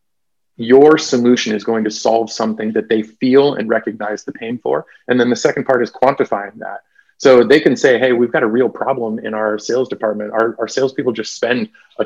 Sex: male